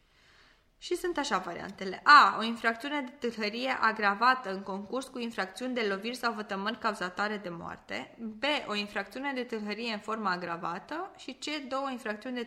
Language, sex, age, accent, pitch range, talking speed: Romanian, female, 20-39, native, 215-275 Hz, 165 wpm